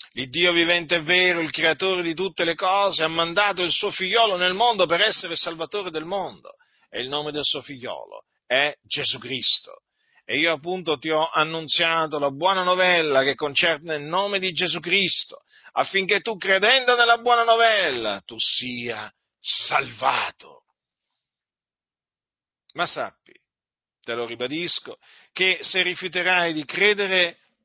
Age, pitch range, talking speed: 40-59, 145-195 Hz, 145 wpm